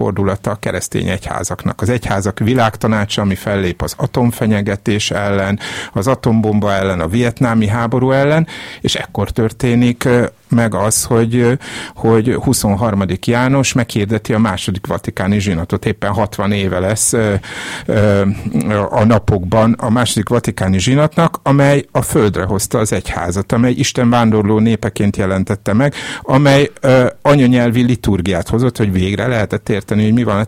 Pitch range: 100-120 Hz